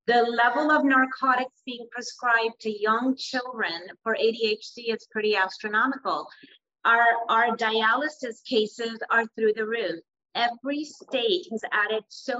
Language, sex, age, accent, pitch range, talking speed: English, female, 30-49, American, 215-270 Hz, 130 wpm